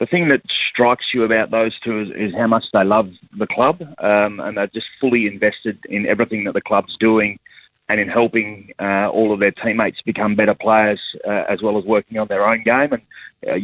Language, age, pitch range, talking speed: English, 30-49, 105-115 Hz, 220 wpm